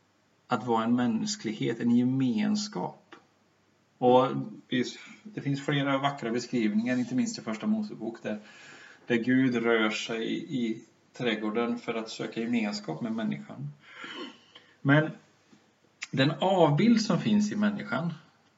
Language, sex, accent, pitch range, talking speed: Swedish, male, native, 115-160 Hz, 125 wpm